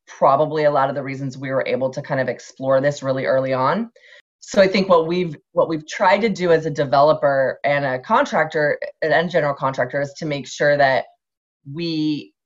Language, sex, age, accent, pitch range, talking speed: English, female, 20-39, American, 130-165 Hz, 200 wpm